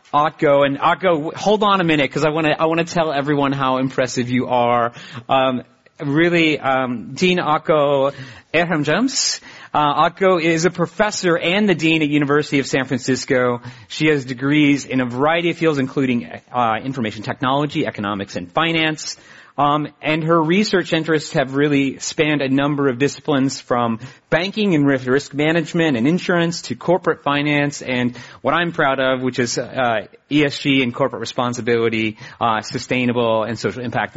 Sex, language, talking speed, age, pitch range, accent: male, English, 165 wpm, 40-59, 130-160 Hz, American